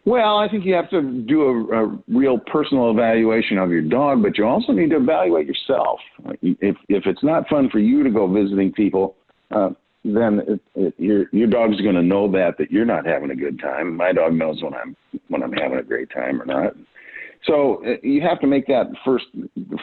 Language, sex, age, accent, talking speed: English, male, 50-69, American, 215 wpm